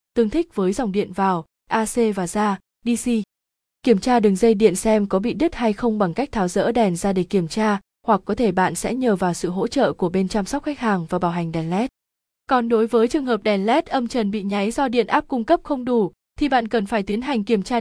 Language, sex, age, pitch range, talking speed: Vietnamese, female, 20-39, 195-240 Hz, 260 wpm